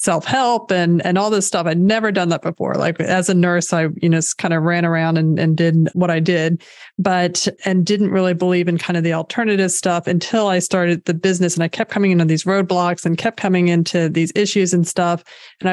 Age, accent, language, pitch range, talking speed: 30-49, American, English, 170-195 Hz, 235 wpm